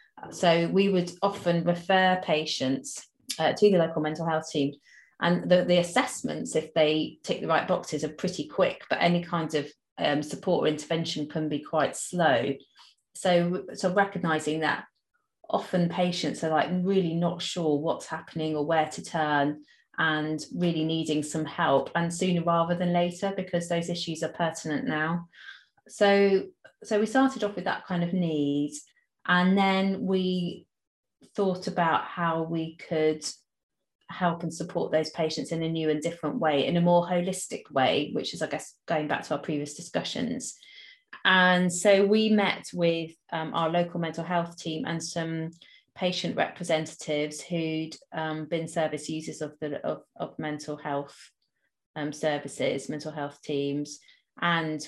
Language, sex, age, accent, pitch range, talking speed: English, female, 30-49, British, 155-180 Hz, 160 wpm